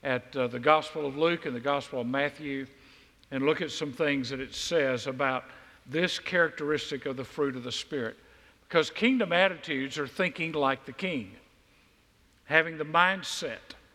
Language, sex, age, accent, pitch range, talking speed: English, male, 50-69, American, 135-180 Hz, 170 wpm